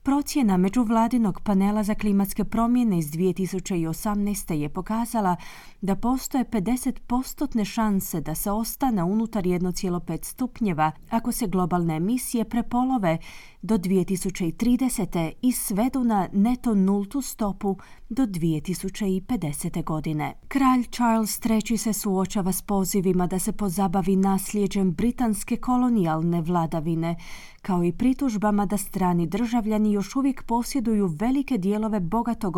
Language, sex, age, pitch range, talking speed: Croatian, female, 30-49, 175-230 Hz, 115 wpm